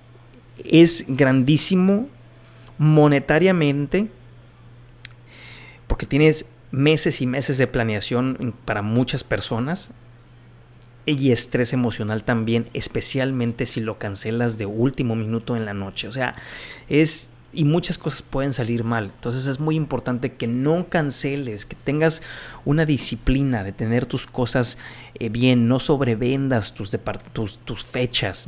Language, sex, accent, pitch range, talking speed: Spanish, male, Mexican, 115-140 Hz, 120 wpm